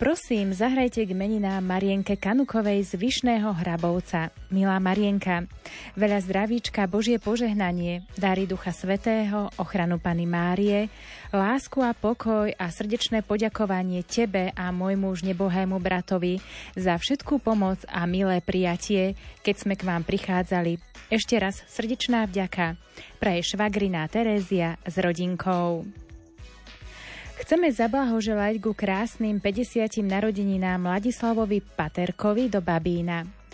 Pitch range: 185-220 Hz